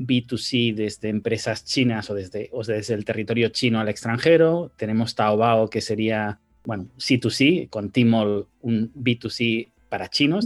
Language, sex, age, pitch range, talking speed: Spanish, male, 30-49, 110-130 Hz, 145 wpm